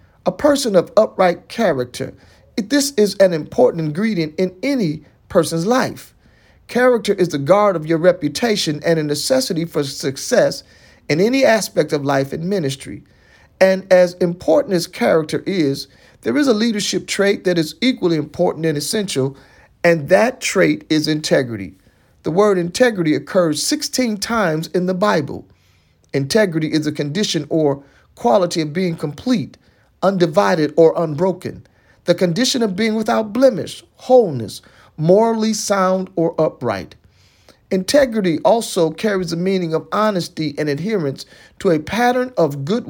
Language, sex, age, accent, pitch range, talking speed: English, male, 40-59, American, 155-215 Hz, 140 wpm